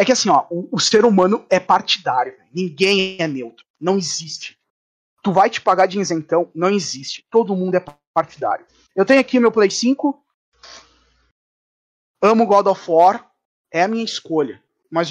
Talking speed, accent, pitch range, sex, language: 165 wpm, Brazilian, 165-220 Hz, male, Portuguese